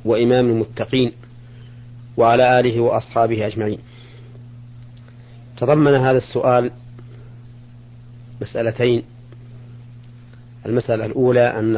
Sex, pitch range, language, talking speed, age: male, 115-120 Hz, Arabic, 65 wpm, 40-59